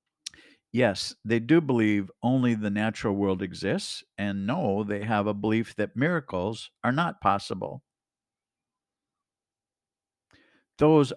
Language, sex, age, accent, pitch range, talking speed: English, male, 50-69, American, 105-130 Hz, 115 wpm